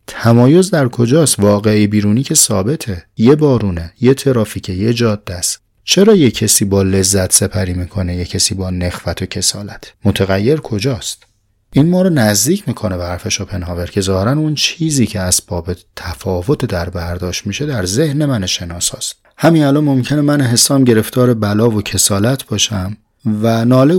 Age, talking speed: 30-49, 155 wpm